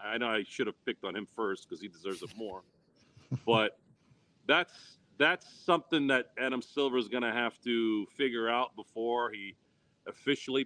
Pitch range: 110-140 Hz